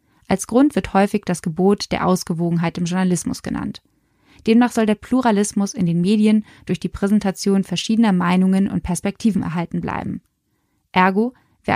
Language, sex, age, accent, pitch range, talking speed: German, female, 20-39, German, 180-215 Hz, 150 wpm